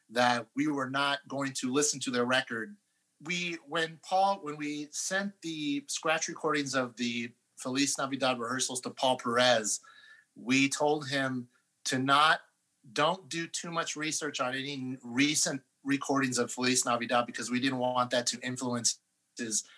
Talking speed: 160 wpm